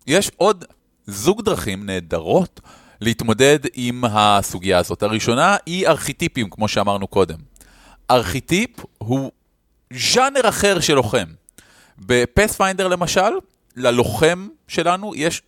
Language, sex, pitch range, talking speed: Hebrew, male, 110-145 Hz, 100 wpm